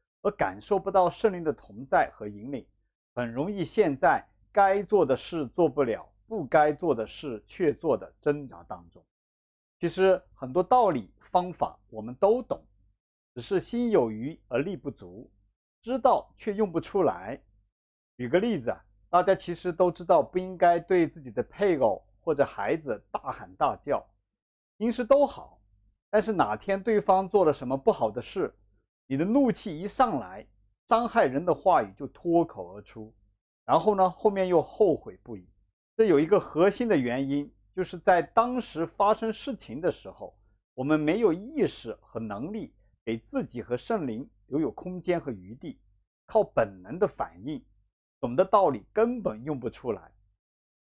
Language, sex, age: Chinese, male, 50-69